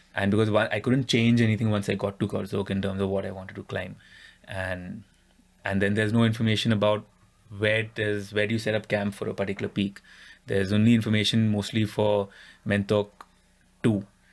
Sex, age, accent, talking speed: male, 20-39, Indian, 195 wpm